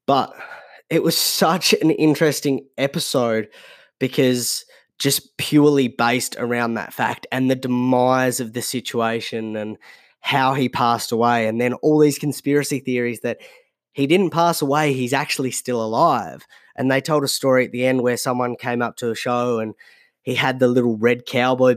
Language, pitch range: English, 115-135 Hz